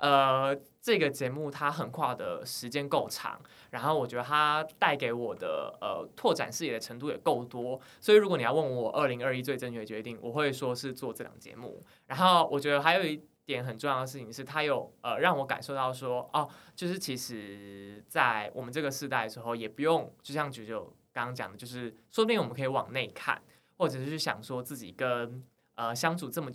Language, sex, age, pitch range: Chinese, male, 20-39, 125-150 Hz